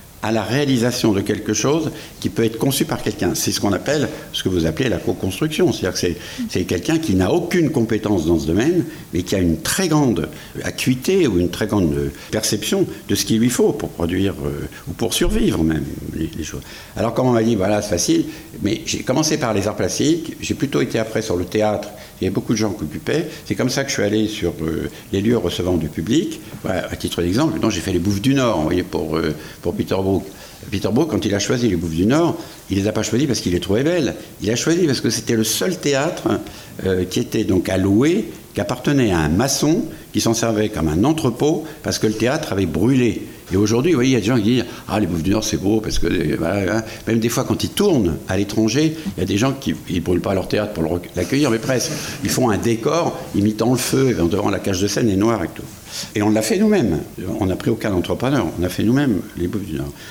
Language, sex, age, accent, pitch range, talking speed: French, male, 60-79, French, 90-120 Hz, 255 wpm